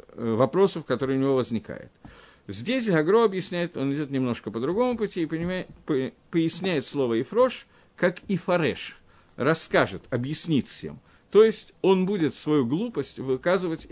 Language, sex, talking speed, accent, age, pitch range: Russian, male, 135 wpm, native, 50-69, 130-185 Hz